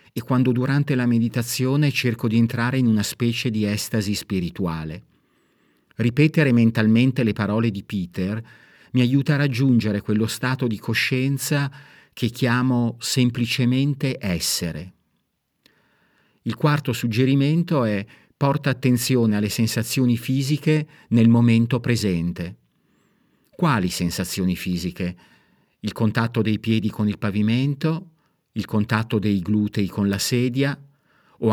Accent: native